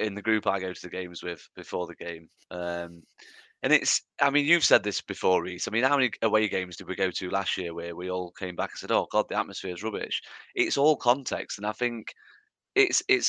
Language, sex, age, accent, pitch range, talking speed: English, male, 30-49, British, 95-130 Hz, 250 wpm